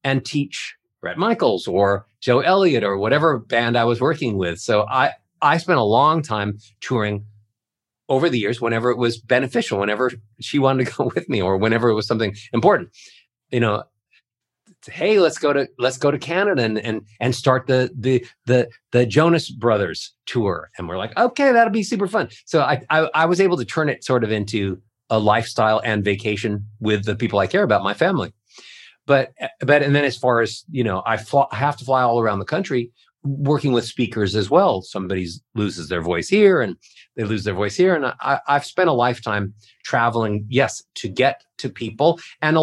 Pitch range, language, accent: 110-145 Hz, English, American